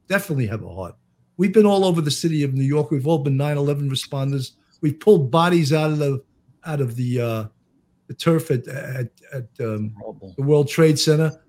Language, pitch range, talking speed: English, 130-175 Hz, 200 wpm